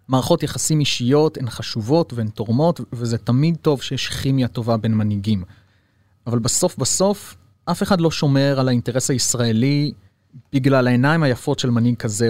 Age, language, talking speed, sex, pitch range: 30-49, Hebrew, 150 wpm, male, 115-140 Hz